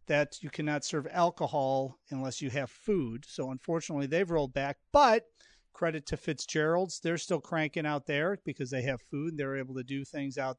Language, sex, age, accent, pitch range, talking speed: English, male, 40-59, American, 145-185 Hz, 195 wpm